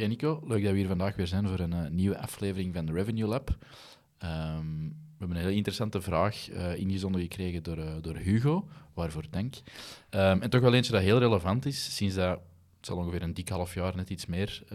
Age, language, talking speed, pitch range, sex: 20-39, Dutch, 220 wpm, 95-115 Hz, male